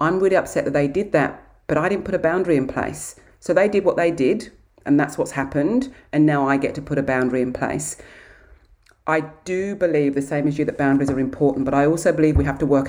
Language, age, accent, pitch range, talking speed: English, 40-59, British, 135-155 Hz, 250 wpm